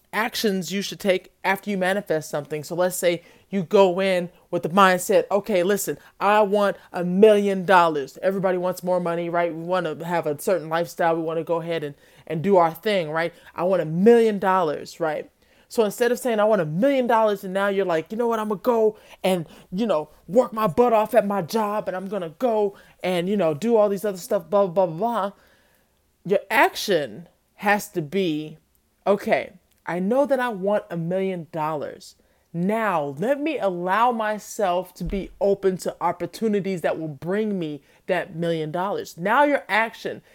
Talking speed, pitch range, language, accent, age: 200 wpm, 170-210 Hz, English, American, 20-39